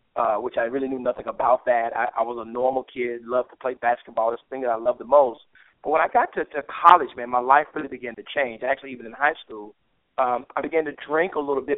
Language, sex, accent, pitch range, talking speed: English, male, American, 120-145 Hz, 270 wpm